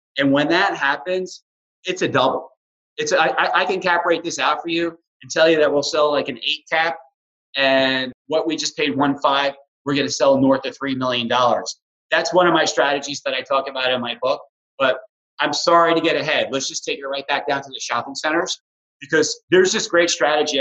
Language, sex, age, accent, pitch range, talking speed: English, male, 30-49, American, 135-170 Hz, 225 wpm